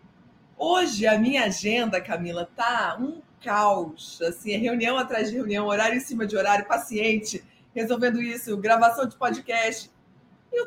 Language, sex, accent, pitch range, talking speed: Portuguese, female, Brazilian, 215-275 Hz, 150 wpm